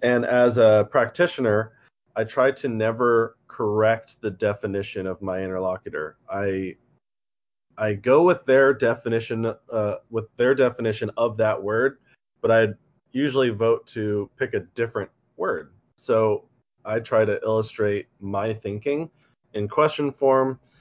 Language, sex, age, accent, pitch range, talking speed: English, male, 30-49, American, 105-125 Hz, 135 wpm